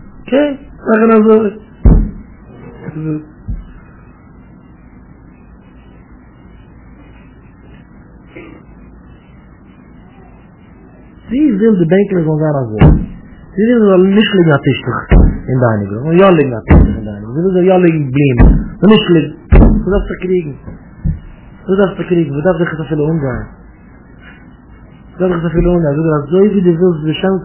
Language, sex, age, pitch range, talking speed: English, male, 50-69, 135-185 Hz, 45 wpm